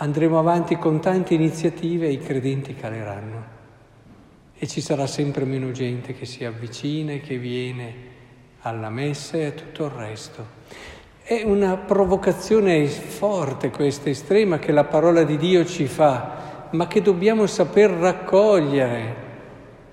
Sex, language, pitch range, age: male, Italian, 140-175 Hz, 60-79